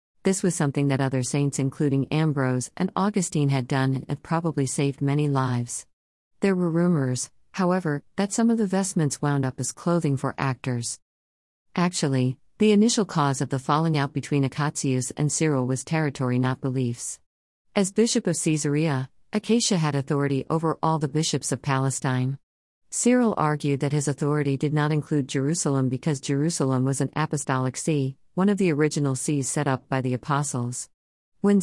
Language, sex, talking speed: Malayalam, female, 165 wpm